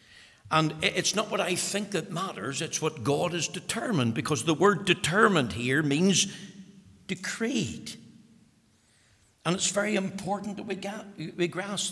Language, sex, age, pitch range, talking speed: English, male, 60-79, 130-195 Hz, 140 wpm